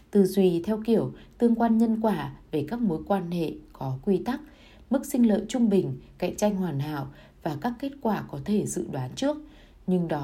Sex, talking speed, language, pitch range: female, 210 wpm, Vietnamese, 155-220 Hz